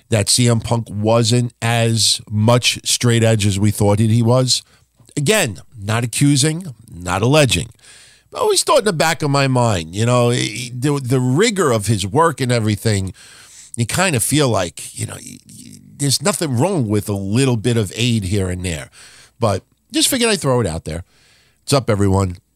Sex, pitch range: male, 110-135 Hz